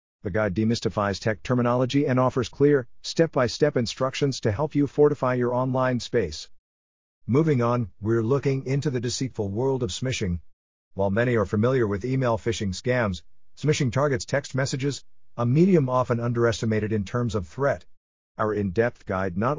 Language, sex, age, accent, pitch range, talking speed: English, male, 50-69, American, 95-130 Hz, 155 wpm